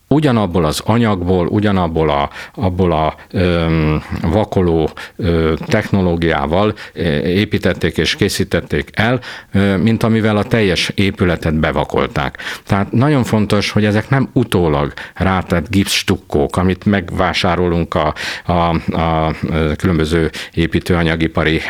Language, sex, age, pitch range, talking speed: Hungarian, male, 50-69, 85-110 Hz, 105 wpm